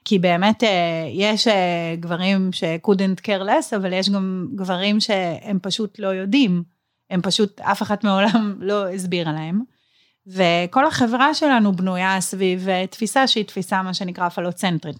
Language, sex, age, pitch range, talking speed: Hebrew, female, 30-49, 175-210 Hz, 135 wpm